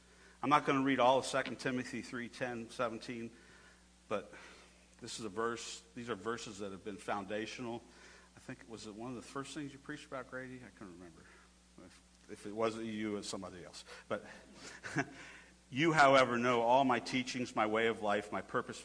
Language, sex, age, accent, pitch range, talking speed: English, male, 50-69, American, 90-110 Hz, 200 wpm